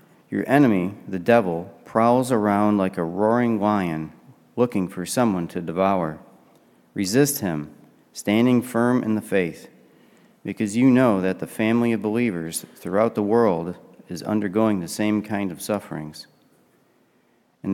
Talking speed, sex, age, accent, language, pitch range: 140 wpm, male, 40-59, American, English, 90-115 Hz